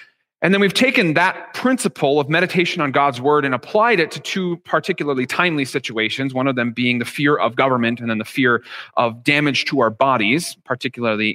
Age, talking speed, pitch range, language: 30-49, 195 wpm, 120-160 Hz, English